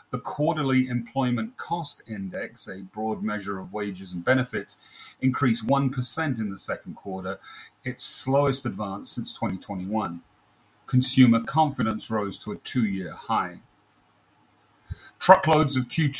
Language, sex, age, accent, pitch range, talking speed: English, male, 40-59, British, 105-130 Hz, 120 wpm